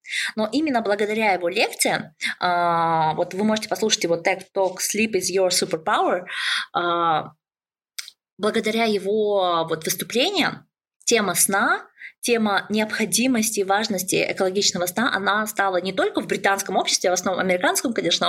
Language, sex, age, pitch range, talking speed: Russian, female, 20-39, 195-260 Hz, 130 wpm